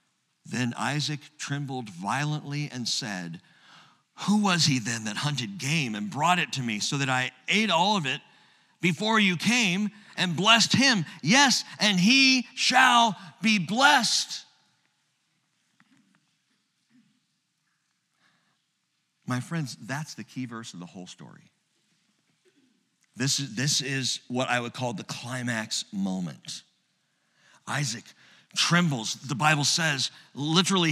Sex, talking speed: male, 125 wpm